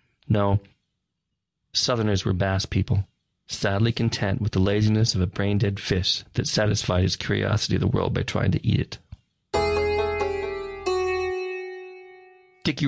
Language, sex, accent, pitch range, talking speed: English, male, American, 100-115 Hz, 130 wpm